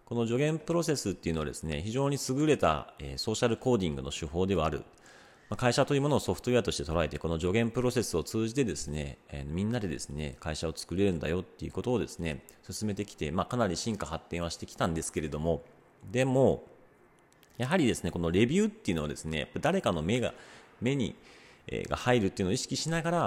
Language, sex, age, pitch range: Japanese, male, 40-59, 85-120 Hz